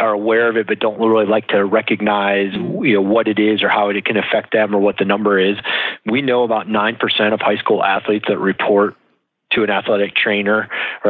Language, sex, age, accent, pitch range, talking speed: English, male, 30-49, American, 100-115 Hz, 210 wpm